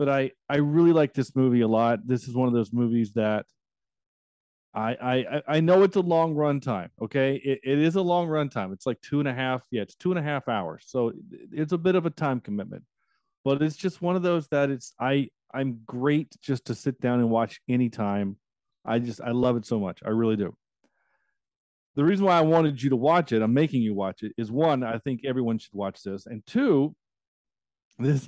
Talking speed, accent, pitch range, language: 225 wpm, American, 115-150 Hz, English